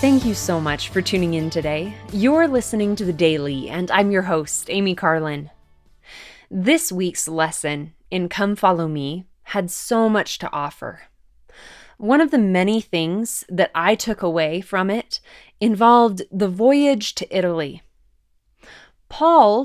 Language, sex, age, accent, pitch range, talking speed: English, female, 20-39, American, 175-245 Hz, 145 wpm